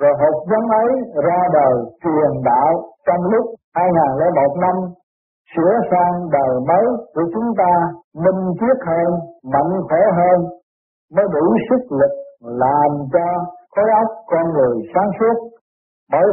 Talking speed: 140 wpm